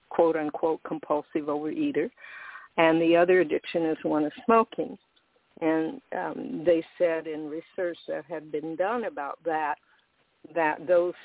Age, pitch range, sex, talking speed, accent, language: 60-79, 160-190 Hz, female, 135 wpm, American, English